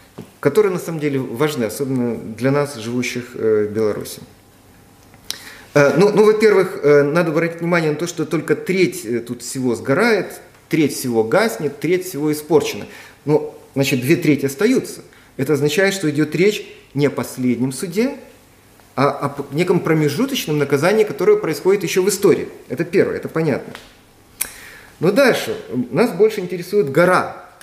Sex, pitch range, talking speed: male, 140-215 Hz, 140 wpm